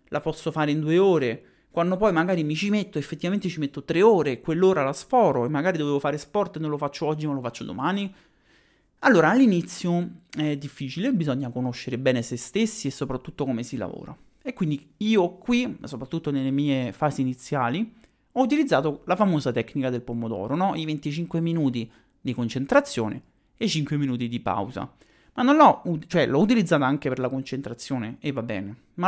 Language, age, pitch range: Italian, 30-49, 135-190 Hz